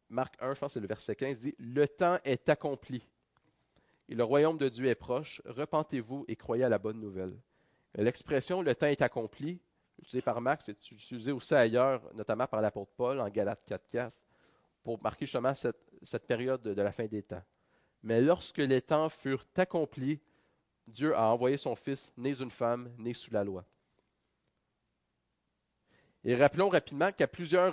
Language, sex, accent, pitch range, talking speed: French, male, Canadian, 120-155 Hz, 190 wpm